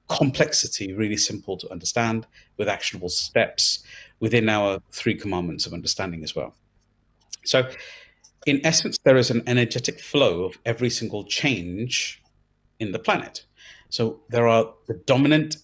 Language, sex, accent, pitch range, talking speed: English, male, British, 100-125 Hz, 140 wpm